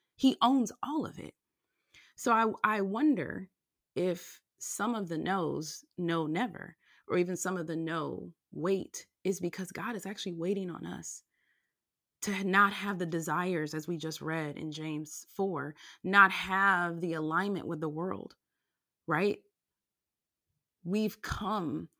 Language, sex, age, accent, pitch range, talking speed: English, female, 30-49, American, 165-225 Hz, 145 wpm